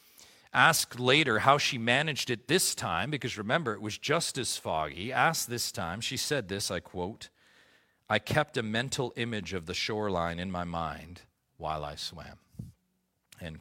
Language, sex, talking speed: English, male, 170 wpm